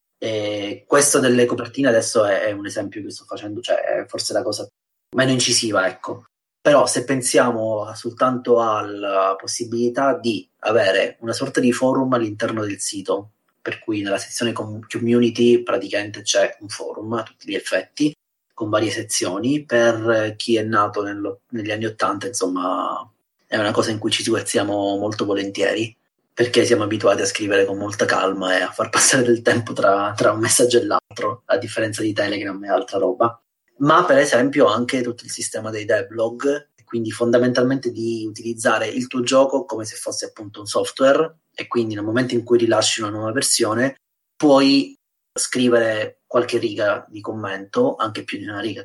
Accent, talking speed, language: native, 170 wpm, Italian